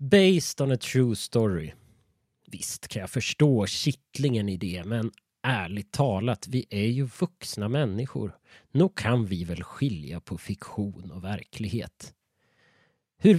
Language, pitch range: Swedish, 100-135 Hz